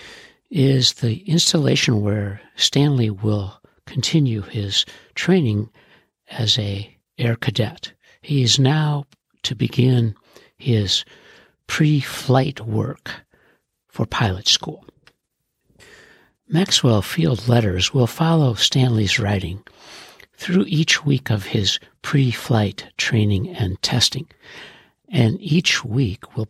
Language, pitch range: English, 105-140 Hz